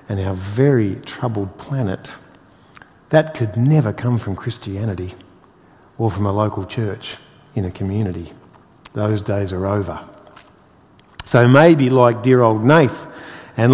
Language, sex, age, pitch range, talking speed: English, male, 50-69, 105-145 Hz, 130 wpm